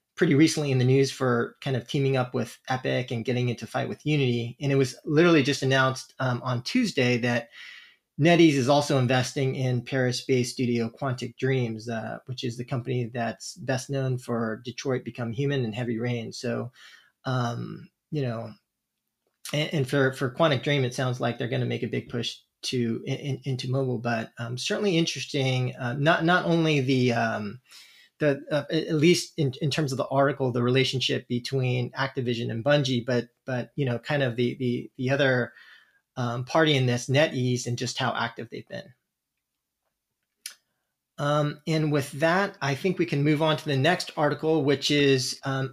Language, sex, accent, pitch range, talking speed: English, male, American, 125-145 Hz, 185 wpm